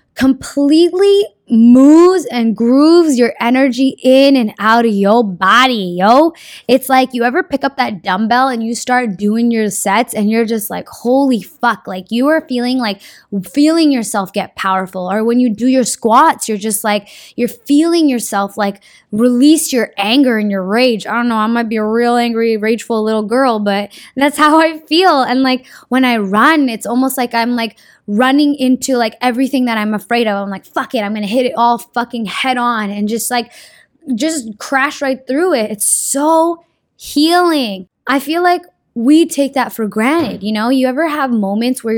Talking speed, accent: 190 wpm, American